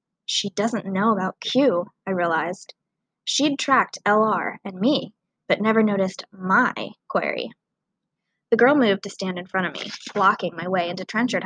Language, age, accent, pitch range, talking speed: English, 20-39, American, 185-235 Hz, 160 wpm